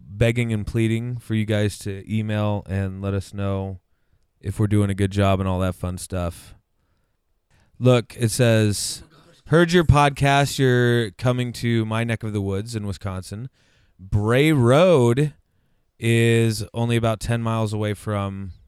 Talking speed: 155 wpm